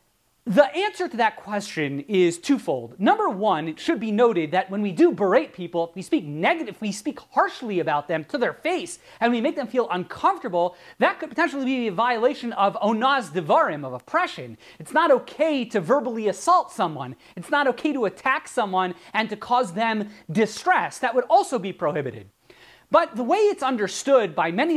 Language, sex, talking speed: English, male, 185 wpm